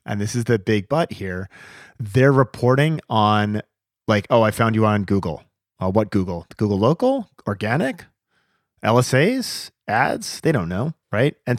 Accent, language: American, English